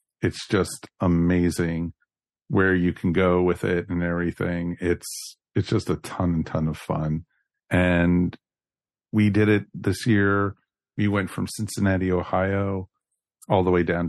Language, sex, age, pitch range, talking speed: English, male, 50-69, 85-100 Hz, 150 wpm